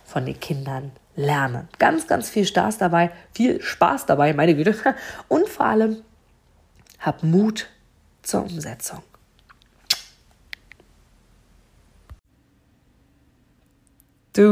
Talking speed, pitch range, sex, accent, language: 90 wpm, 165-220 Hz, female, German, German